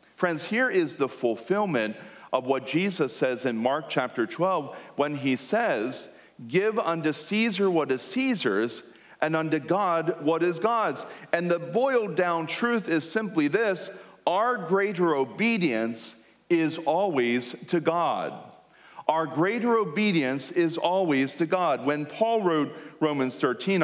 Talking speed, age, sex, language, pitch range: 140 wpm, 40-59, male, English, 140-210 Hz